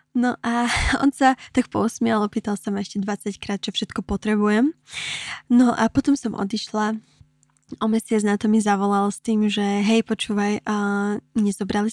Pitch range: 210-230 Hz